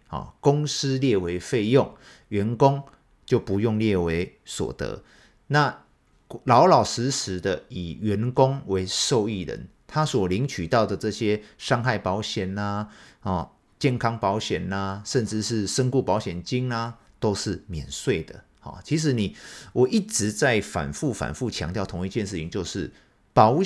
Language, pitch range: Chinese, 95-135 Hz